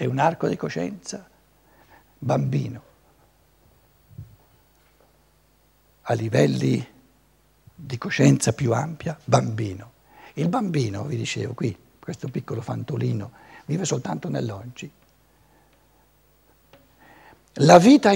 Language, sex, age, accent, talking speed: Italian, male, 60-79, native, 85 wpm